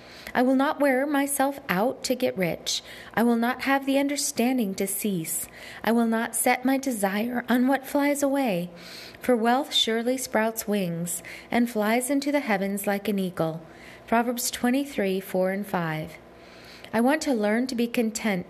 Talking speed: 170 wpm